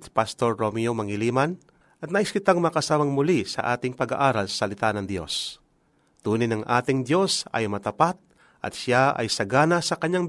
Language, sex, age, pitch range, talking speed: Filipino, male, 40-59, 115-160 Hz, 165 wpm